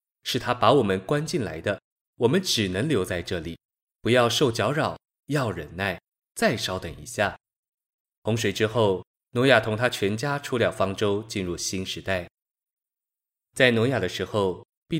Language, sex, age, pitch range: Chinese, male, 20-39, 95-125 Hz